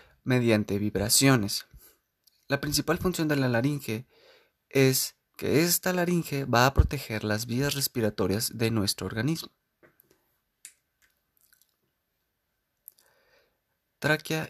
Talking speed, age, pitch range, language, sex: 90 wpm, 30-49, 115-145 Hz, Spanish, male